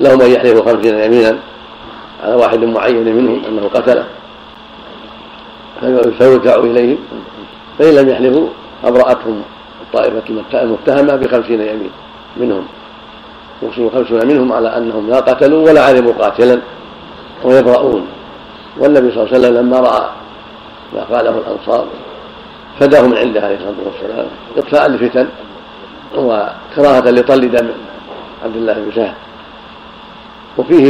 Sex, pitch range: male, 115-130 Hz